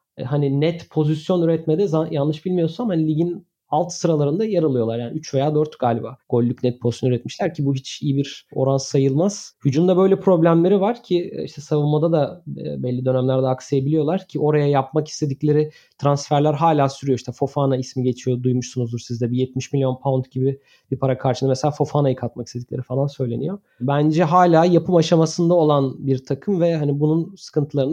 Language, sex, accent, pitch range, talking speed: Turkish, male, native, 140-175 Hz, 165 wpm